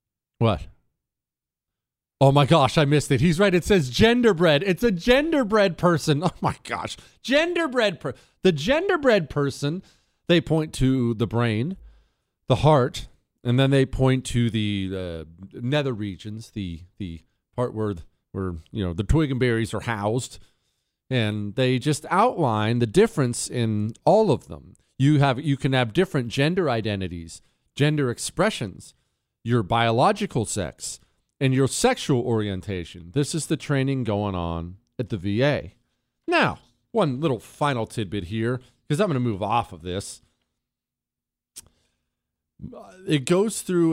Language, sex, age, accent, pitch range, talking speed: English, male, 40-59, American, 105-155 Hz, 145 wpm